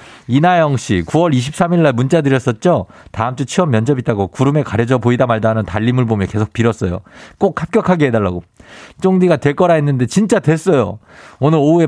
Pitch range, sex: 115-160 Hz, male